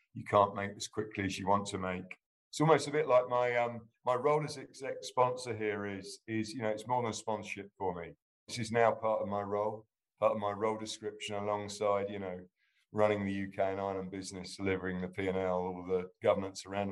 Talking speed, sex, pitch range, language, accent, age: 220 wpm, male, 90-110 Hz, English, British, 50-69